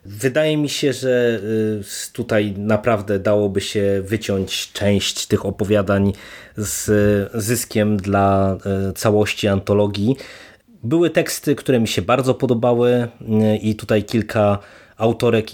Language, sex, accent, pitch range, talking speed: Polish, male, native, 105-130 Hz, 110 wpm